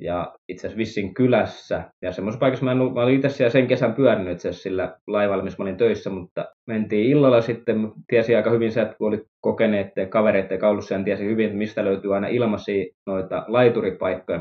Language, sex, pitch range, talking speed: Finnish, male, 105-120 Hz, 185 wpm